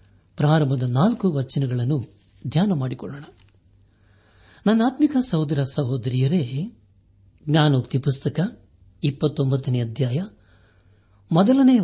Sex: male